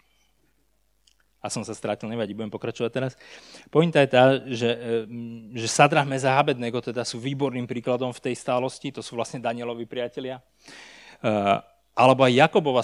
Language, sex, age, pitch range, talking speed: Slovak, male, 30-49, 120-145 Hz, 140 wpm